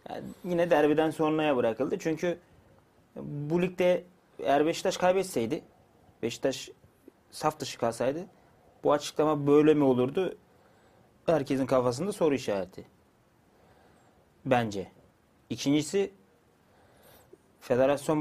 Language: Turkish